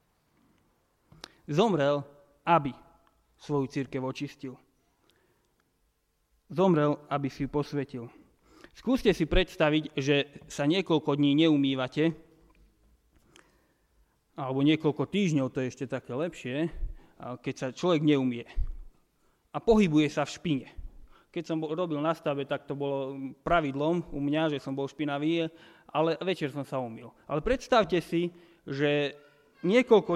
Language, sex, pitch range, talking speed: Slovak, male, 140-170 Hz, 120 wpm